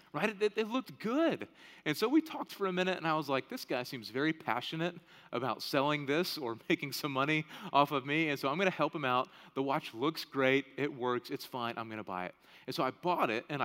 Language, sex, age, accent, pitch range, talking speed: English, male, 30-49, American, 130-175 Hz, 255 wpm